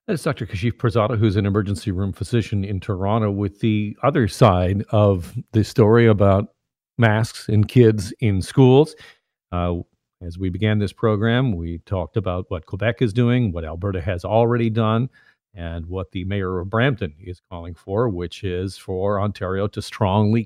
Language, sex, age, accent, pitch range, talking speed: English, male, 50-69, American, 95-120 Hz, 170 wpm